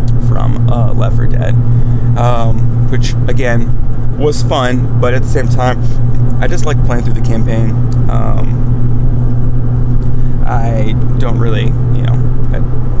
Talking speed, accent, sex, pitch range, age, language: 125 wpm, American, male, 115-120 Hz, 30-49, English